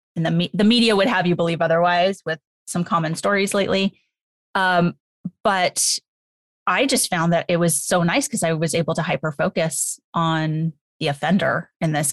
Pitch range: 155-185 Hz